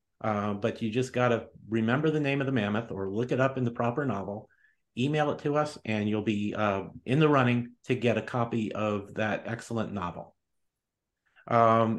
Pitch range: 115-160 Hz